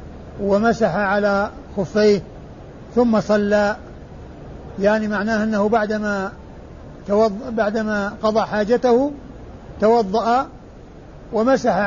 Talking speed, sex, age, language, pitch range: 70 wpm, male, 60-79, Arabic, 205-230 Hz